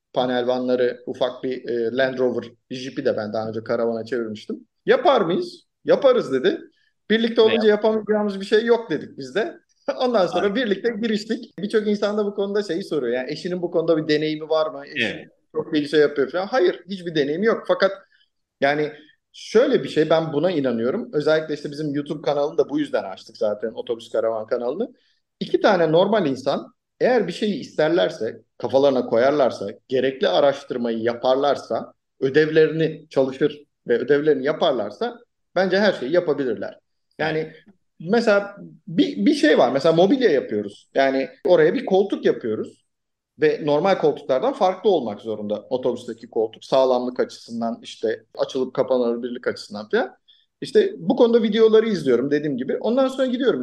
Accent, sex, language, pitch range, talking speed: native, male, Turkish, 135-220 Hz, 155 wpm